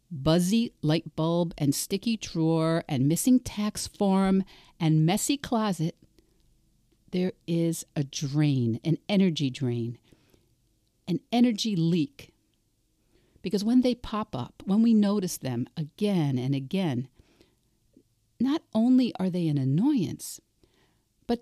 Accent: American